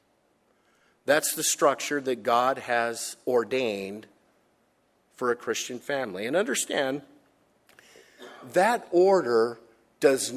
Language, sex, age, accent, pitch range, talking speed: English, male, 50-69, American, 130-190 Hz, 95 wpm